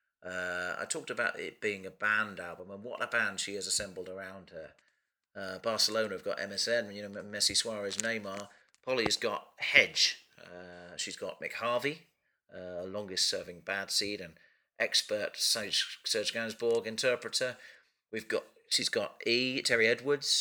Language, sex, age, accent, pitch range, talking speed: English, male, 40-59, British, 95-120 Hz, 155 wpm